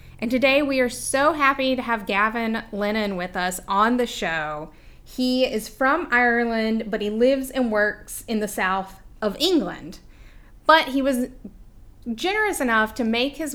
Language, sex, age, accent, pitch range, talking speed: English, female, 30-49, American, 195-255 Hz, 165 wpm